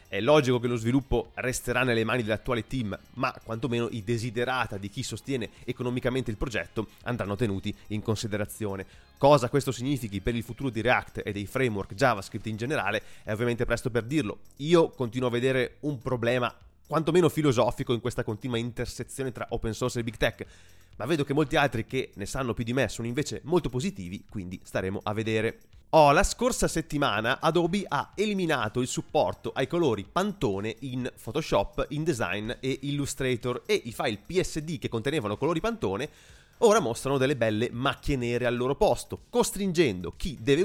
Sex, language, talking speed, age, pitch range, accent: male, Italian, 175 wpm, 30-49, 110-150 Hz, native